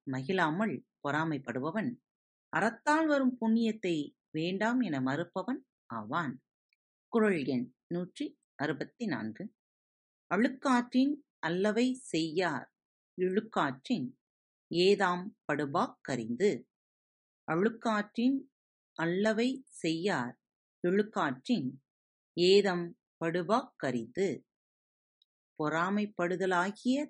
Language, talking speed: Tamil, 55 wpm